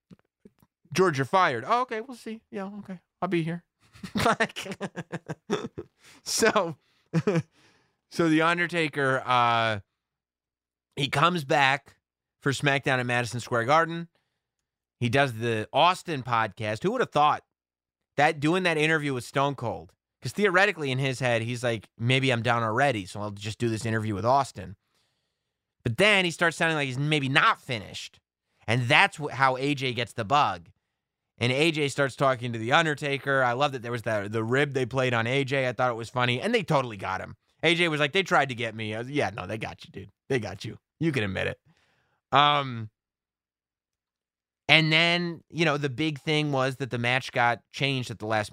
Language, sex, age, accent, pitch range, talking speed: English, male, 30-49, American, 115-160 Hz, 180 wpm